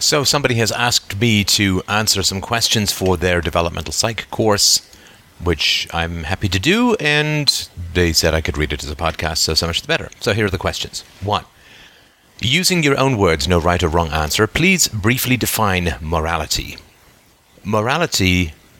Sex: male